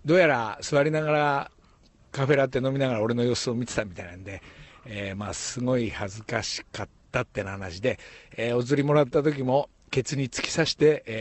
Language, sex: Japanese, male